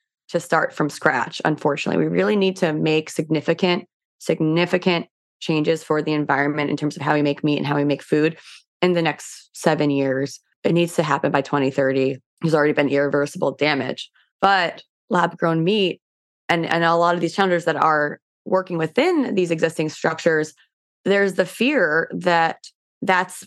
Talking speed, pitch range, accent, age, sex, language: 170 wpm, 155-180 Hz, American, 20-39, female, English